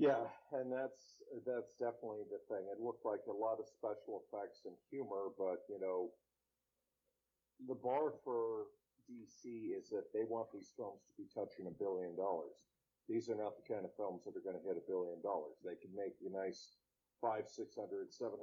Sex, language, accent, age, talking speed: male, English, American, 50-69, 195 wpm